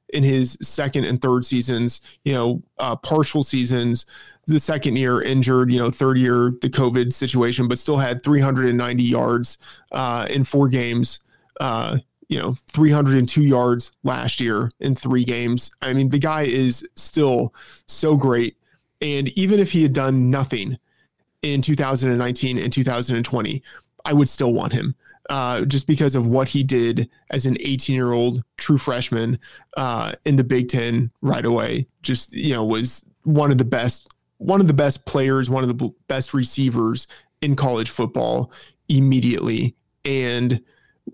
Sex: male